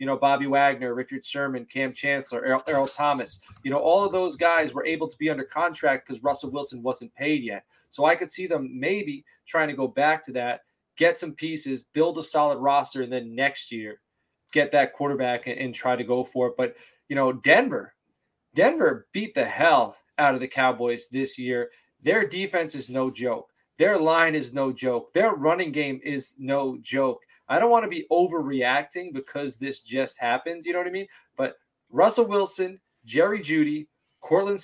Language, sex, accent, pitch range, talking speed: English, male, American, 130-170 Hz, 195 wpm